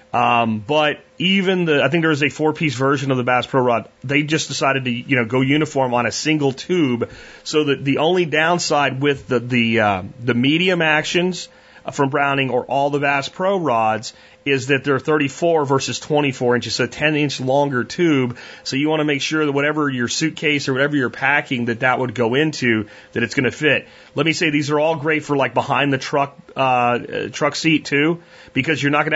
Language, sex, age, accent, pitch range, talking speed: English, male, 30-49, American, 125-150 Hz, 215 wpm